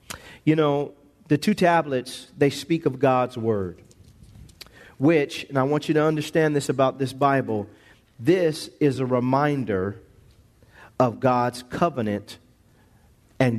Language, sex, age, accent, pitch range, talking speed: English, male, 40-59, American, 115-170 Hz, 130 wpm